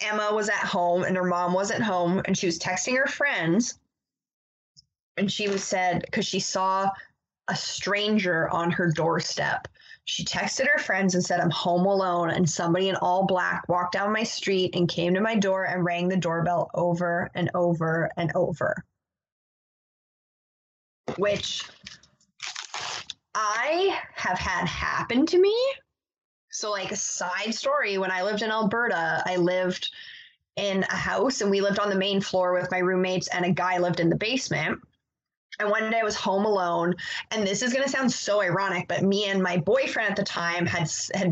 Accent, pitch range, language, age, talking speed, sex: American, 175-210 Hz, English, 20-39, 180 wpm, female